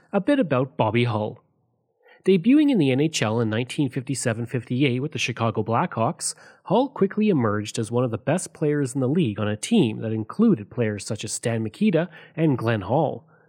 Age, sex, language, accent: 30-49, male, English, Canadian